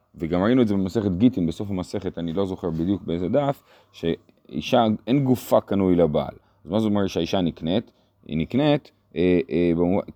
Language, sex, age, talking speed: Hebrew, male, 30-49, 170 wpm